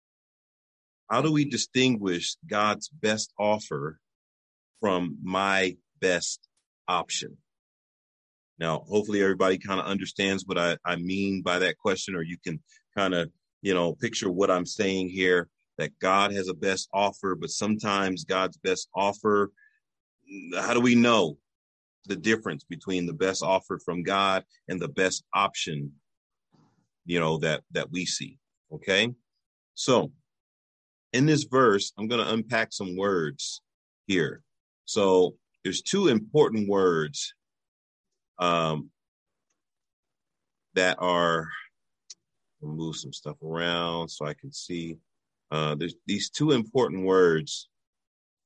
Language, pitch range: English, 85-105 Hz